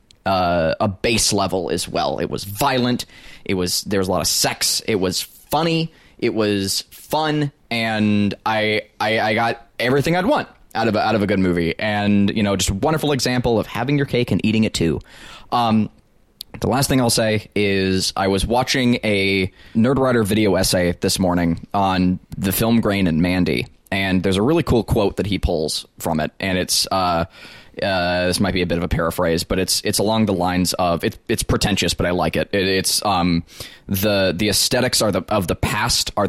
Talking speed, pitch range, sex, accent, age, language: 210 wpm, 95-115 Hz, male, American, 20-39, English